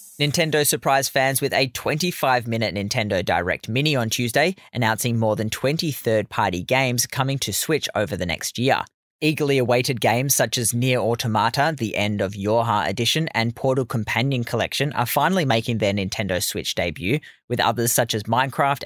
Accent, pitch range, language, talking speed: Australian, 105-140 Hz, English, 165 wpm